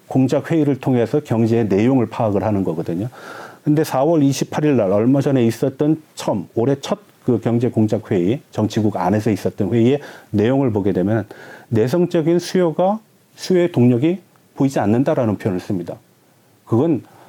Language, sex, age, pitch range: Korean, male, 40-59, 110-165 Hz